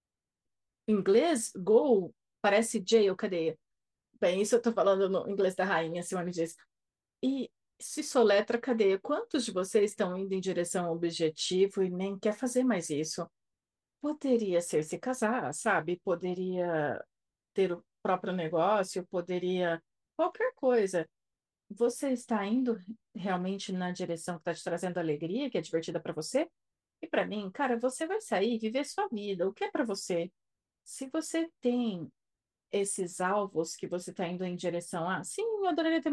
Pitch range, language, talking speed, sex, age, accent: 175-250 Hz, Portuguese, 165 wpm, female, 40-59, Brazilian